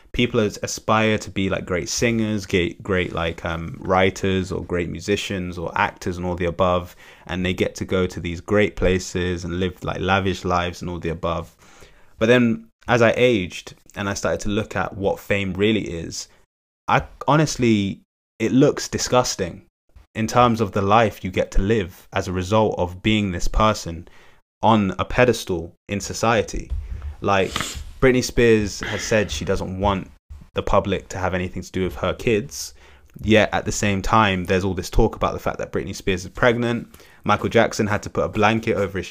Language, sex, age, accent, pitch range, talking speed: English, male, 20-39, British, 90-110 Hz, 190 wpm